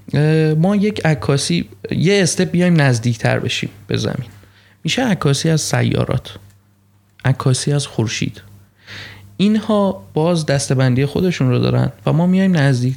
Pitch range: 110-170 Hz